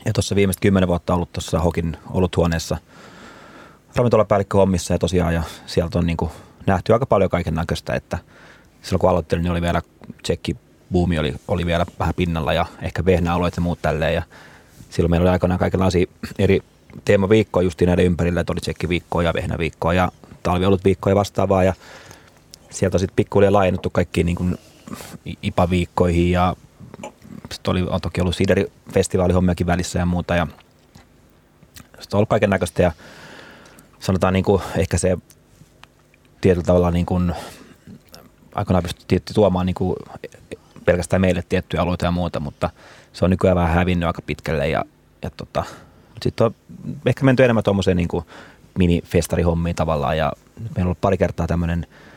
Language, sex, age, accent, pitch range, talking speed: Finnish, male, 30-49, native, 85-95 Hz, 150 wpm